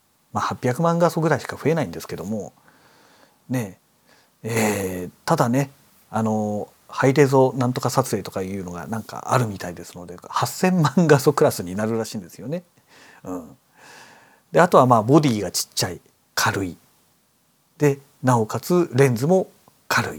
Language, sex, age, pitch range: Japanese, male, 40-59, 115-175 Hz